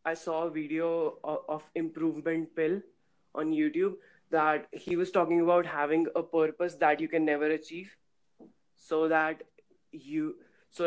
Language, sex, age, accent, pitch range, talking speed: English, female, 20-39, Indian, 155-175 Hz, 145 wpm